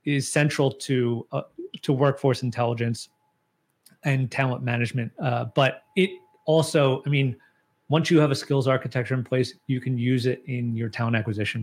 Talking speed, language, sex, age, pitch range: 165 wpm, English, male, 30-49, 115-135 Hz